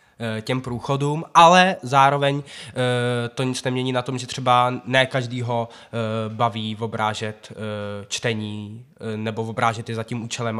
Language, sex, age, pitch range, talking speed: Czech, male, 20-39, 120-140 Hz, 160 wpm